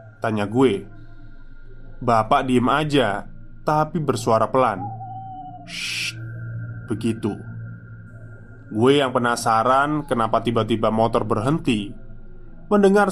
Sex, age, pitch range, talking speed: male, 20-39, 110-135 Hz, 80 wpm